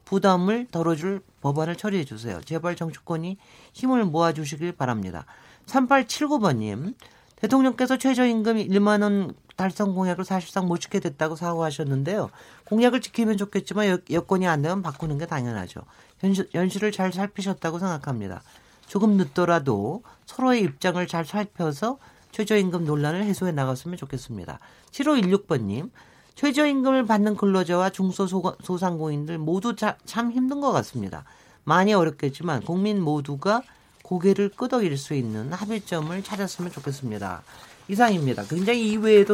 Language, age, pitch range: Korean, 40-59, 150-205 Hz